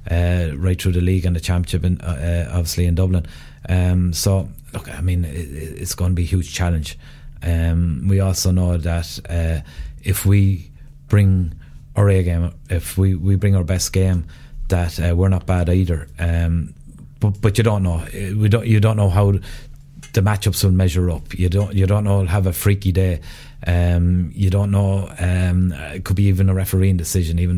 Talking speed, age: 200 wpm, 30-49